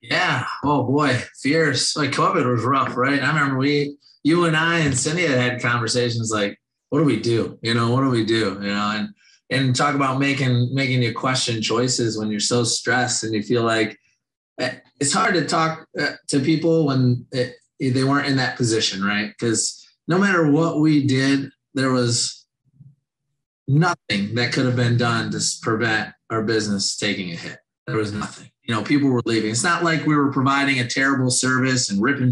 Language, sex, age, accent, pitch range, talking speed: English, male, 30-49, American, 115-140 Hz, 190 wpm